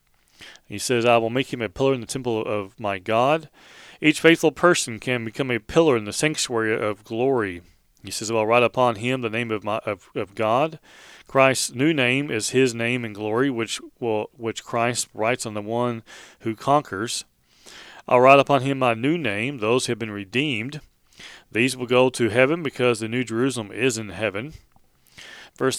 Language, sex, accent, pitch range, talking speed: English, male, American, 110-135 Hz, 190 wpm